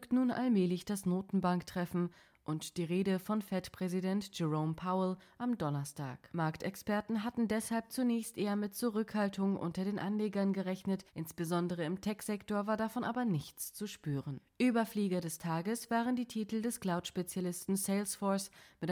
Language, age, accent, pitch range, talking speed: German, 20-39, German, 175-215 Hz, 135 wpm